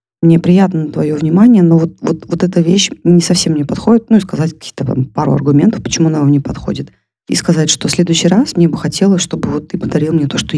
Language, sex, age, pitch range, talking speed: Russian, female, 30-49, 145-180 Hz, 235 wpm